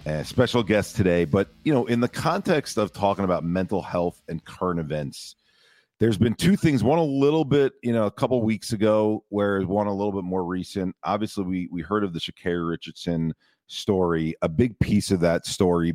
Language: English